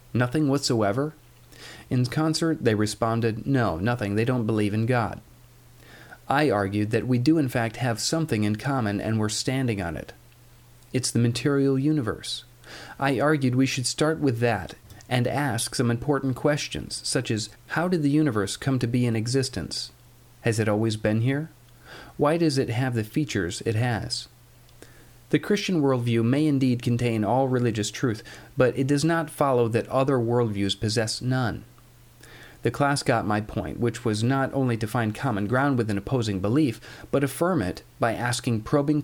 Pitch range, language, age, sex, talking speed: 110-135 Hz, English, 40-59, male, 170 wpm